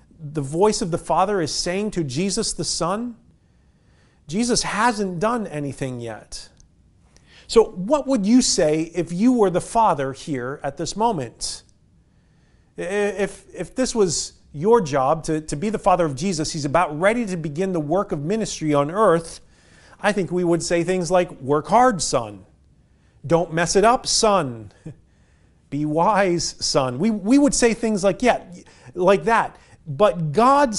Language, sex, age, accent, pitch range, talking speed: English, male, 40-59, American, 155-230 Hz, 160 wpm